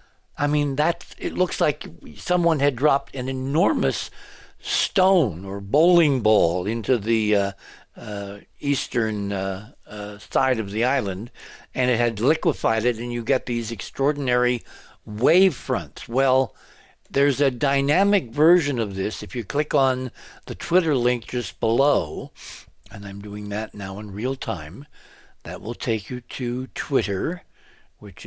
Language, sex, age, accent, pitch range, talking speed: English, male, 60-79, American, 115-160 Hz, 145 wpm